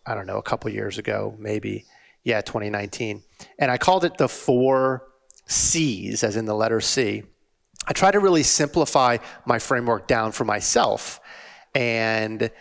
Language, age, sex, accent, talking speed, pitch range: English, 30-49, male, American, 160 wpm, 115-135 Hz